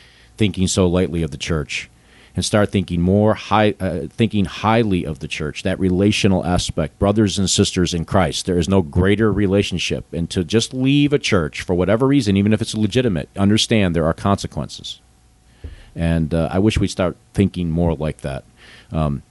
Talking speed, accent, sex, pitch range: 185 wpm, American, male, 80-100 Hz